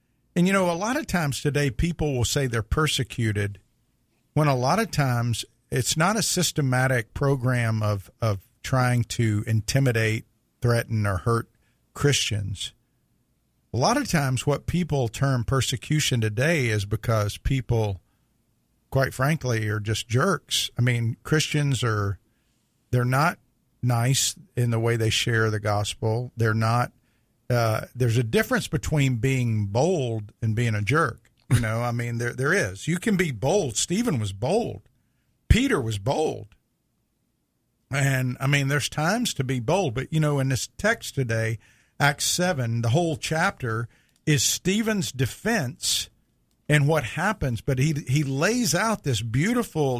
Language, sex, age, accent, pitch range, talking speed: English, male, 50-69, American, 115-145 Hz, 150 wpm